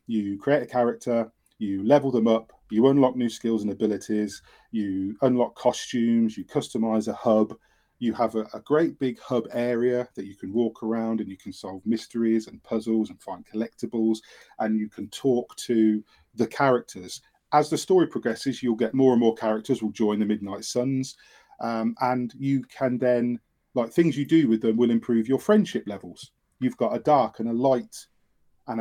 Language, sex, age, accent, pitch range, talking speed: English, male, 40-59, British, 105-125 Hz, 185 wpm